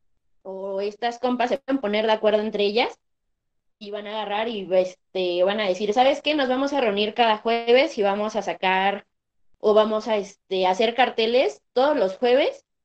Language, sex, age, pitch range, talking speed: Spanish, female, 20-39, 200-250 Hz, 175 wpm